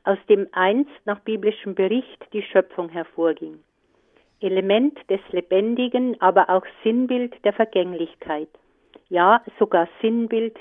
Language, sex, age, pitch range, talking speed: German, female, 50-69, 180-230 Hz, 115 wpm